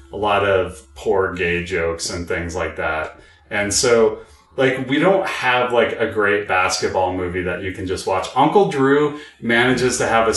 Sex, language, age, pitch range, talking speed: male, English, 30-49, 100-145 Hz, 185 wpm